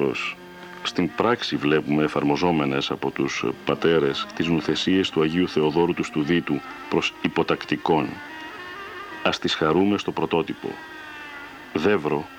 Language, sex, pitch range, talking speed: Greek, male, 85-105 Hz, 105 wpm